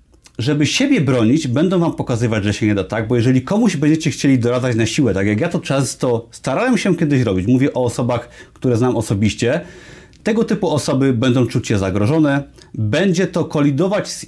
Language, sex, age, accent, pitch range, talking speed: Polish, male, 30-49, native, 120-155 Hz, 190 wpm